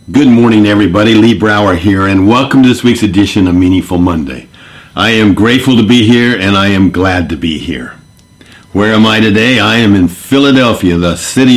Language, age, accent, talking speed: English, 50-69, American, 195 wpm